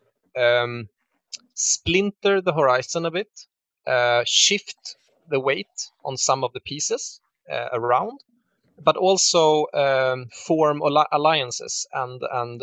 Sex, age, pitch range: male, 30-49, 120-170 Hz